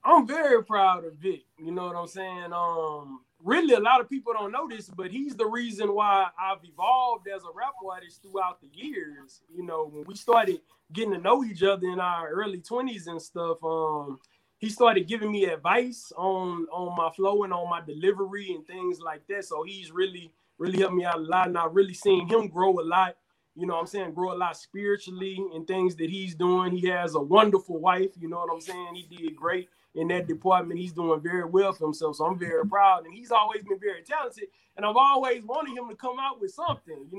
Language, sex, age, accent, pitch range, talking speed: English, male, 20-39, American, 175-215 Hz, 225 wpm